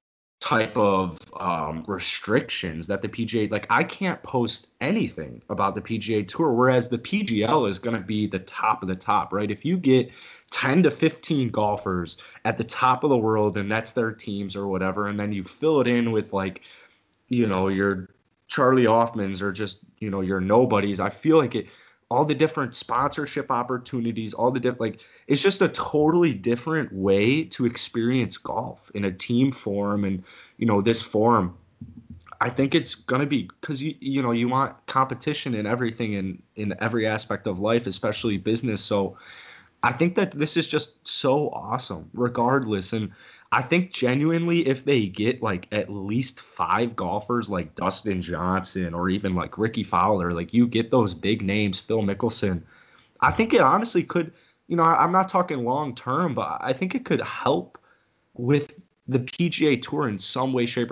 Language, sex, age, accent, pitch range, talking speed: English, male, 20-39, American, 100-135 Hz, 180 wpm